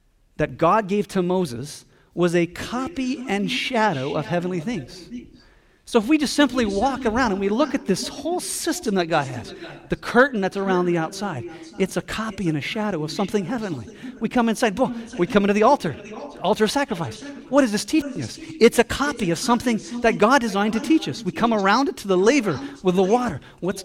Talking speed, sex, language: 210 wpm, male, English